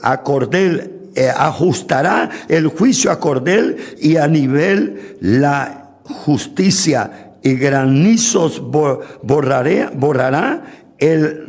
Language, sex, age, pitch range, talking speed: Spanish, male, 60-79, 130-170 Hz, 90 wpm